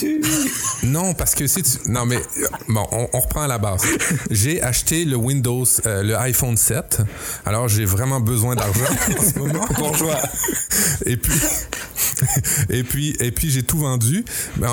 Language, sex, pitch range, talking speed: French, male, 105-130 Hz, 165 wpm